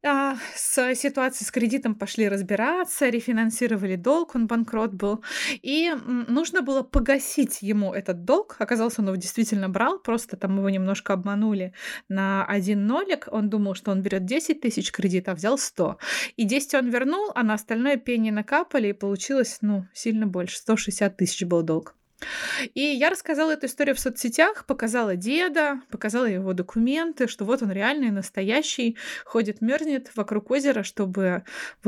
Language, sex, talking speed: Russian, female, 155 wpm